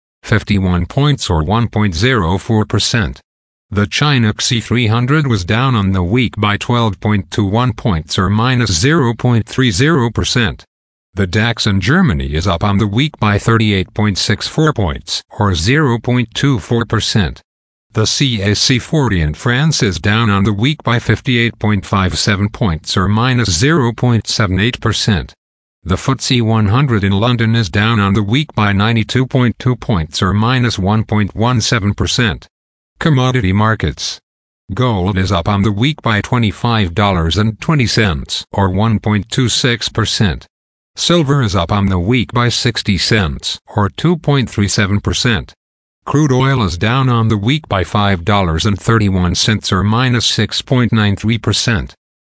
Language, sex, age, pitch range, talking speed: English, male, 50-69, 100-120 Hz, 115 wpm